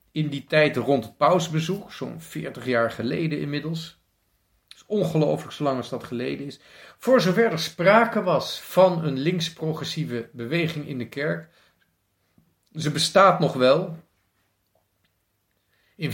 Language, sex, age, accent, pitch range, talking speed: Dutch, male, 50-69, Dutch, 105-165 Hz, 135 wpm